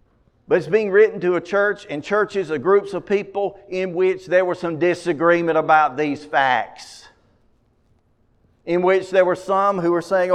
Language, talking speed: English, 175 wpm